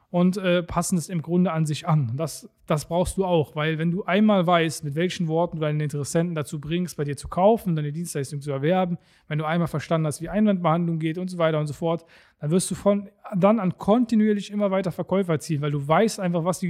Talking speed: 235 wpm